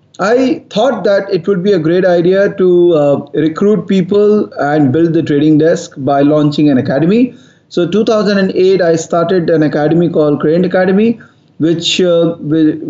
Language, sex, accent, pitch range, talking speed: English, male, Indian, 150-185 Hz, 155 wpm